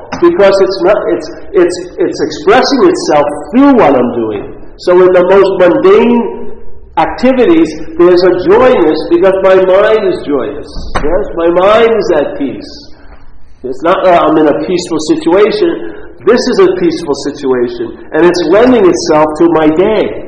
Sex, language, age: male, English, 50-69